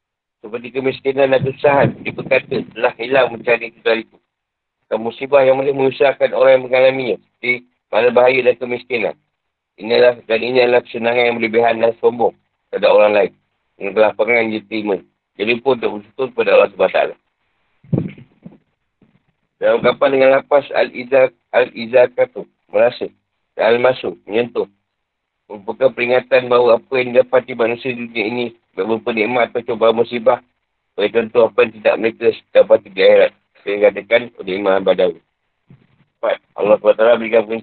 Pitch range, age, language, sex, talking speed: 115-135 Hz, 50-69, Malay, male, 130 wpm